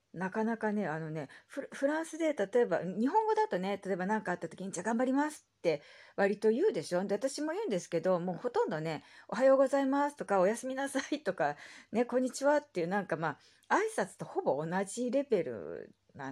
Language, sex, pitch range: Japanese, female, 165-230 Hz